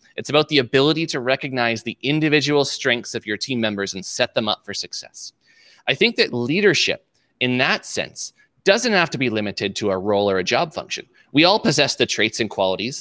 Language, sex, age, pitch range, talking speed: English, male, 20-39, 110-150 Hz, 210 wpm